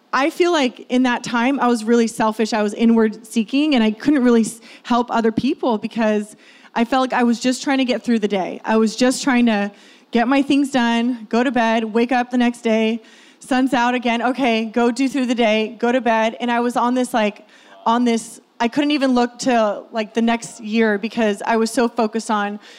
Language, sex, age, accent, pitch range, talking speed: English, female, 30-49, American, 225-265 Hz, 225 wpm